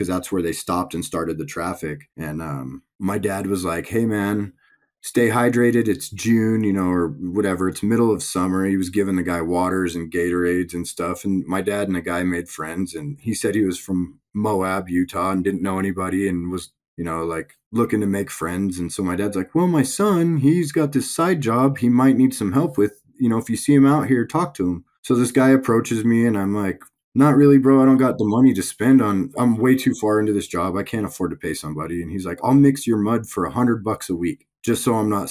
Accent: American